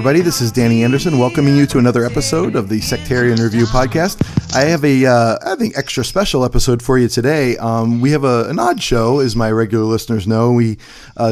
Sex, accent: male, American